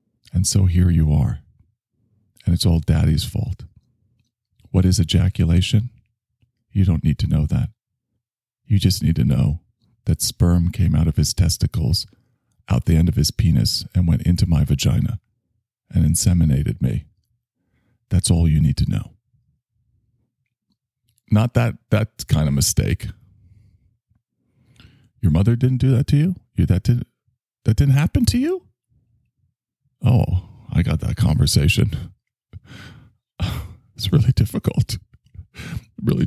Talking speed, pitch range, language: 135 wpm, 90-120 Hz, English